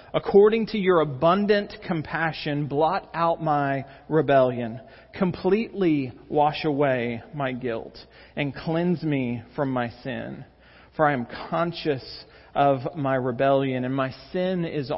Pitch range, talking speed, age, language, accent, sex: 130-160 Hz, 125 wpm, 40-59, English, American, male